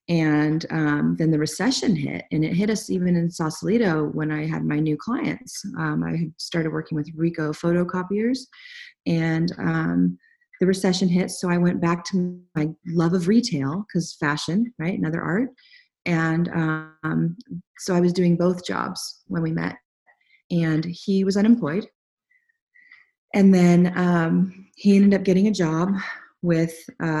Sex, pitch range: female, 155-190 Hz